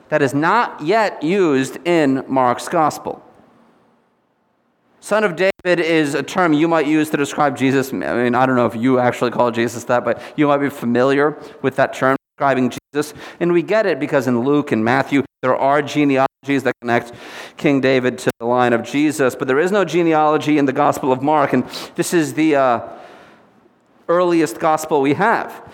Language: English